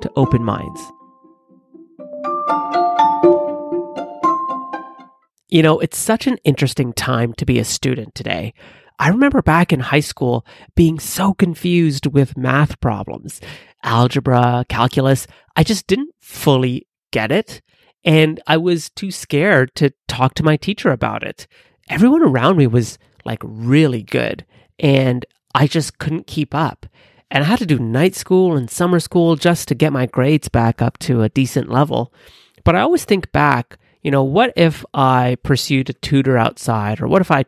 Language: English